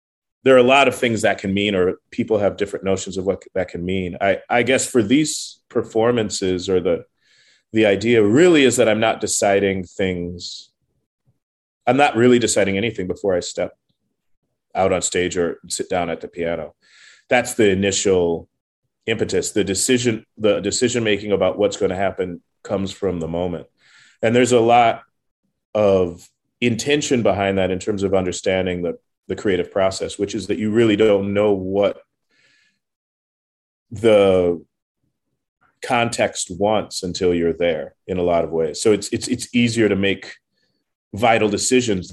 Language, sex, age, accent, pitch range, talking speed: English, male, 30-49, American, 95-120 Hz, 160 wpm